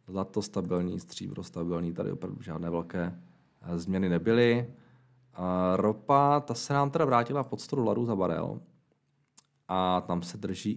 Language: Czech